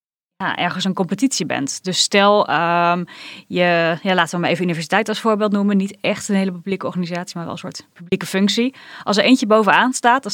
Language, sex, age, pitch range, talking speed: Dutch, female, 20-39, 170-200 Hz, 210 wpm